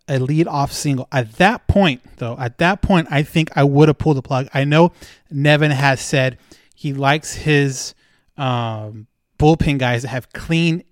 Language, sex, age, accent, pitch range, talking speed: English, male, 30-49, American, 135-160 Hz, 180 wpm